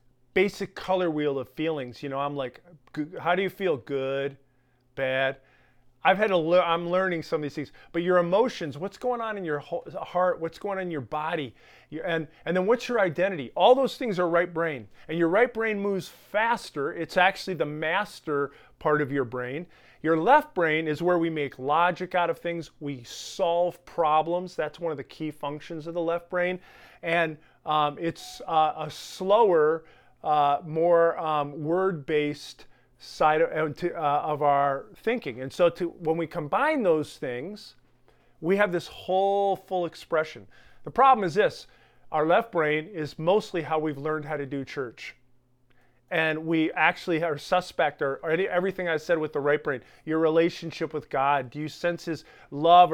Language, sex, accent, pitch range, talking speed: English, male, American, 150-180 Hz, 185 wpm